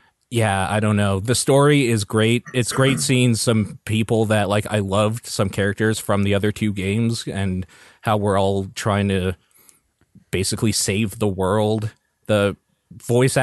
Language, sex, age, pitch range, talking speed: English, male, 20-39, 100-120 Hz, 160 wpm